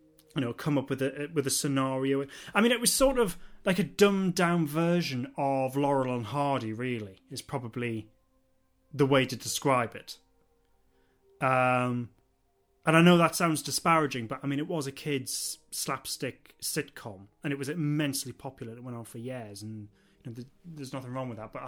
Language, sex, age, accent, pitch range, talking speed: English, male, 30-49, British, 125-150 Hz, 185 wpm